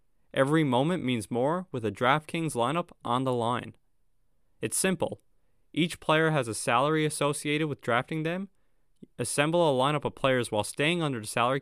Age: 20-39